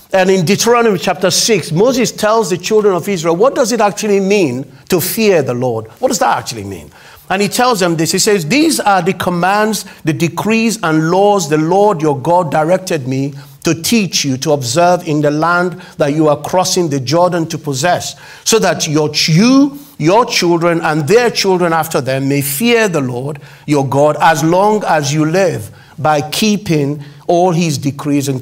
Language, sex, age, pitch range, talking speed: English, male, 50-69, 140-190 Hz, 190 wpm